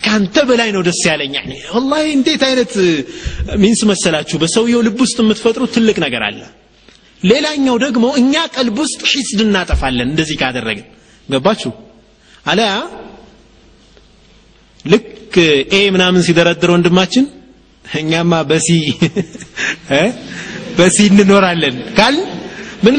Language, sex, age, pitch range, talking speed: Amharic, male, 30-49, 160-240 Hz, 100 wpm